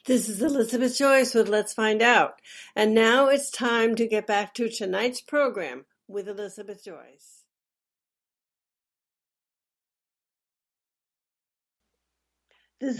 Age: 60-79